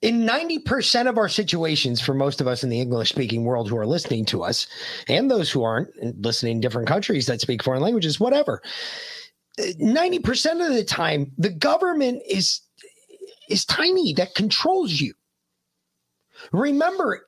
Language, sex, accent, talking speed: English, male, American, 155 wpm